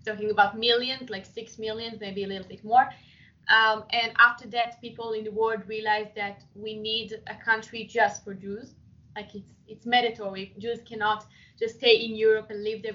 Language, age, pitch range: Italian, 20-39, 210-240 Hz